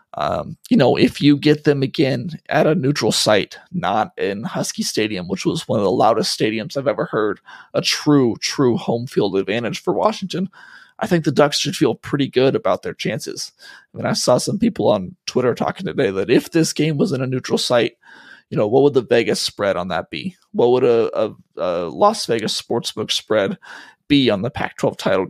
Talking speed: 210 wpm